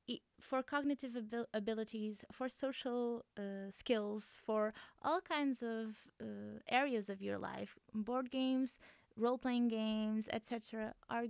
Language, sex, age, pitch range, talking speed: English, female, 20-39, 210-255 Hz, 120 wpm